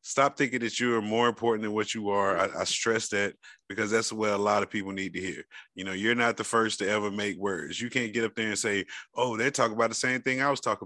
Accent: American